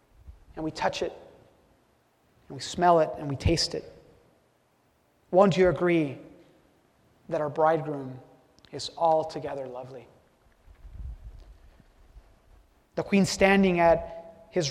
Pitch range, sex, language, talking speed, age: 165-245 Hz, male, English, 105 wpm, 30-49